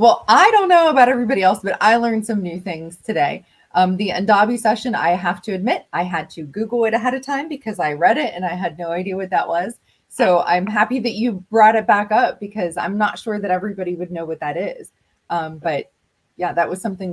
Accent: American